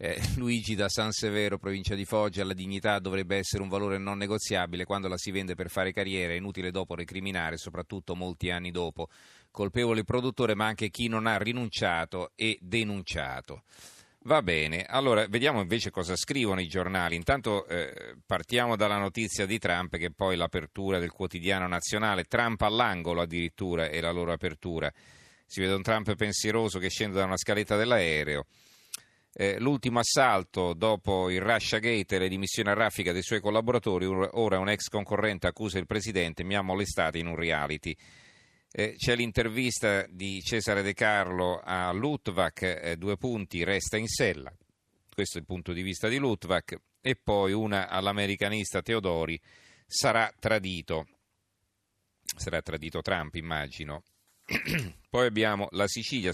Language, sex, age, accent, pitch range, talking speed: Italian, male, 40-59, native, 90-110 Hz, 155 wpm